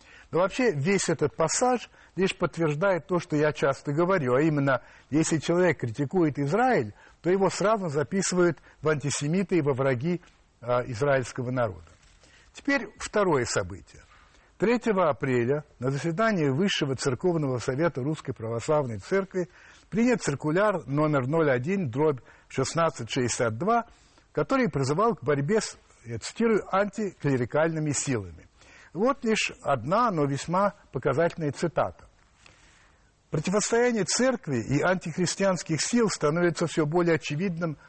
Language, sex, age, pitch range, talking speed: Russian, male, 60-79, 140-190 Hz, 110 wpm